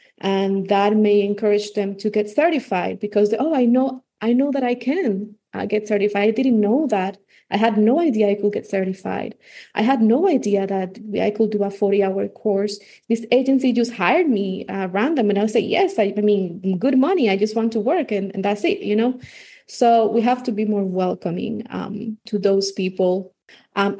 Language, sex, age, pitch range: English, female, 20-39, 200-230 Hz